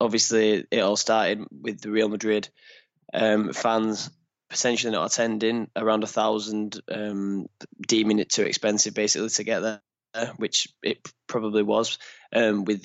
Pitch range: 105-115 Hz